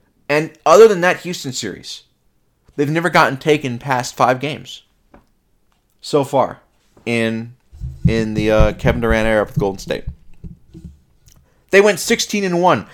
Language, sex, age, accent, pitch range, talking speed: English, male, 30-49, American, 130-190 Hz, 140 wpm